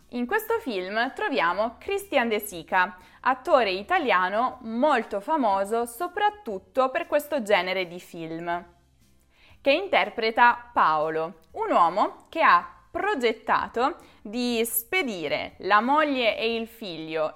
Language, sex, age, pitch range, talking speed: Italian, female, 20-39, 180-295 Hz, 110 wpm